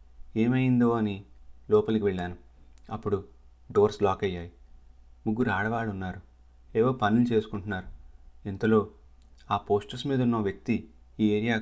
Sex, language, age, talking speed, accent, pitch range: male, Telugu, 30-49, 115 wpm, native, 90-110 Hz